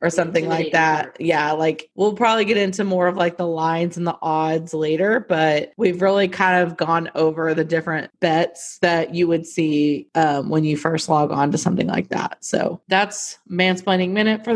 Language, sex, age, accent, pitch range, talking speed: English, female, 30-49, American, 165-190 Hz, 200 wpm